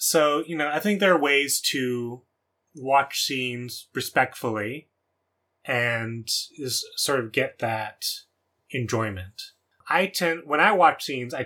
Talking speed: 135 wpm